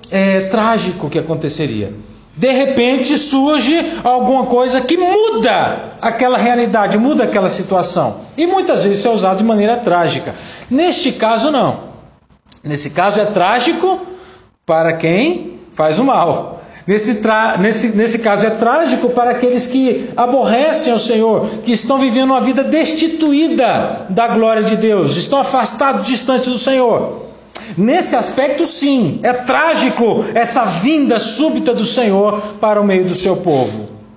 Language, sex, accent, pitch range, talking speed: Portuguese, male, Brazilian, 180-260 Hz, 140 wpm